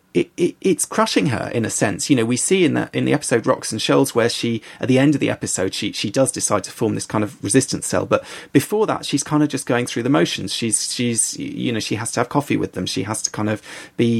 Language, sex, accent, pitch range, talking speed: English, male, British, 110-145 Hz, 285 wpm